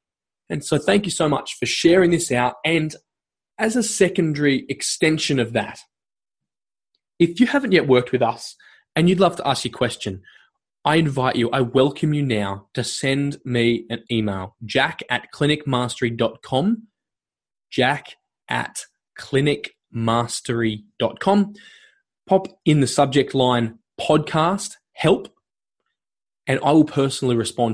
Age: 20-39